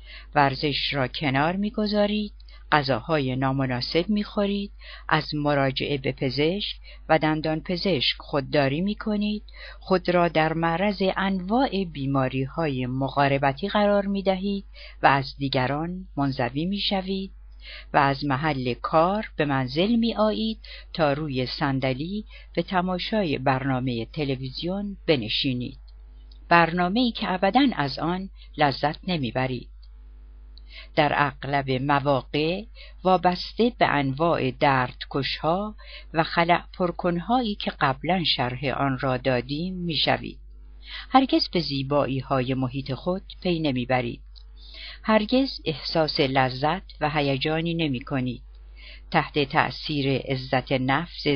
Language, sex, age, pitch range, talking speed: Persian, female, 50-69, 130-185 Hz, 110 wpm